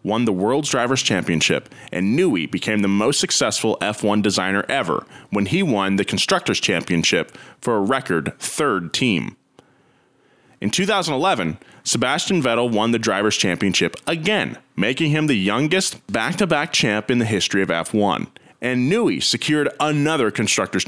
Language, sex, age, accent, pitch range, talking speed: English, male, 30-49, American, 100-145 Hz, 145 wpm